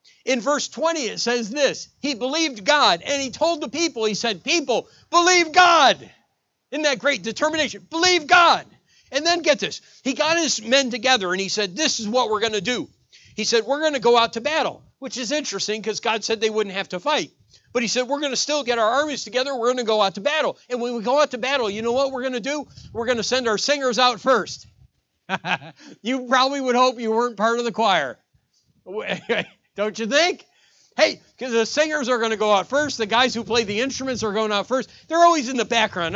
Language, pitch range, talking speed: English, 230-295 Hz, 235 wpm